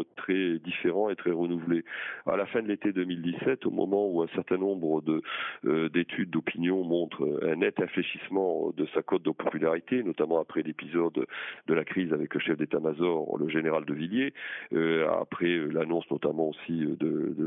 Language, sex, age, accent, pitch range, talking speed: French, male, 40-59, French, 80-100 Hz, 180 wpm